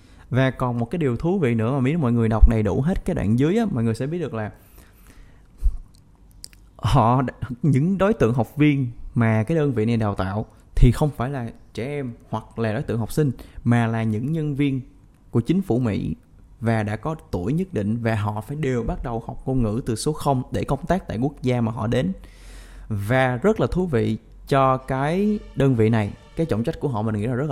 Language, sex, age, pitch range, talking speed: Vietnamese, male, 20-39, 110-140 Hz, 230 wpm